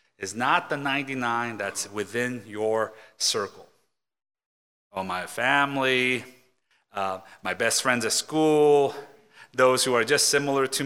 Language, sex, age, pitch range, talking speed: English, male, 30-49, 115-145 Hz, 125 wpm